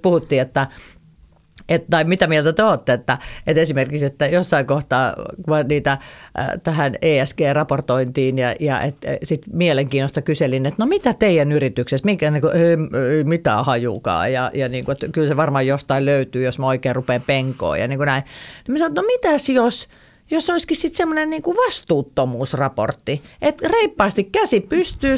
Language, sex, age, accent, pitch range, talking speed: Finnish, female, 40-59, native, 140-205 Hz, 170 wpm